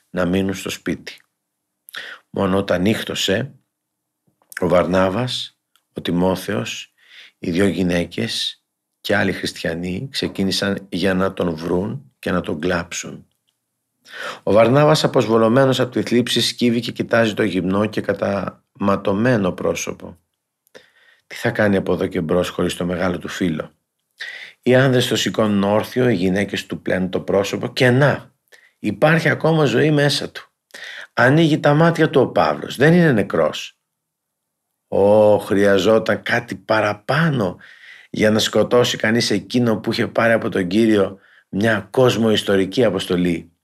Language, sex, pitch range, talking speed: Greek, male, 95-125 Hz, 135 wpm